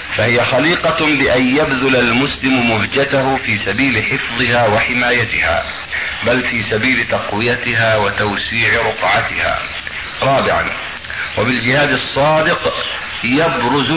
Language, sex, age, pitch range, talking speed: Arabic, male, 50-69, 120-150 Hz, 85 wpm